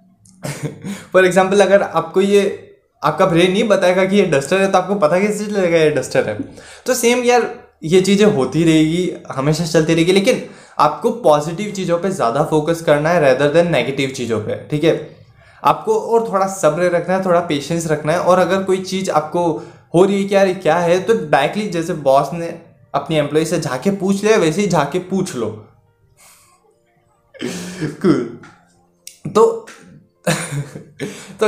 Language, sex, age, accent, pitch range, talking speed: Hindi, male, 20-39, native, 145-185 Hz, 160 wpm